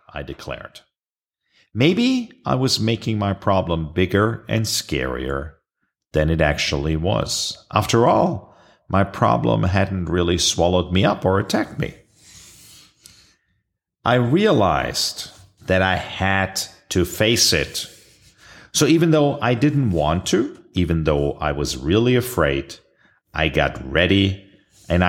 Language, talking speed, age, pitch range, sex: English, 125 wpm, 50-69, 90-130 Hz, male